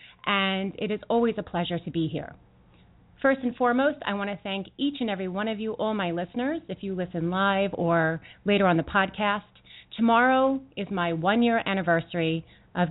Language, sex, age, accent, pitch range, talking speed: English, female, 30-49, American, 170-220 Hz, 185 wpm